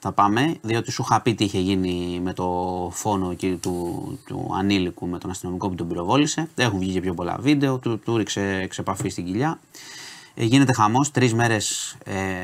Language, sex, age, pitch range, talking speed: Greek, male, 30-49, 95-120 Hz, 185 wpm